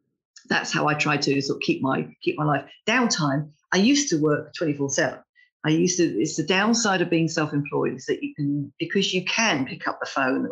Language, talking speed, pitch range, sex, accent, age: English, 235 wpm, 145-180 Hz, female, British, 50-69